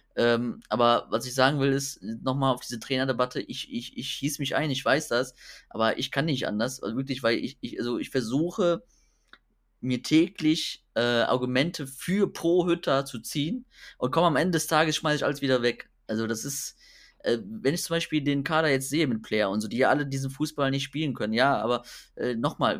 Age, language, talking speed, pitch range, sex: 20-39, German, 215 wpm, 120-160 Hz, male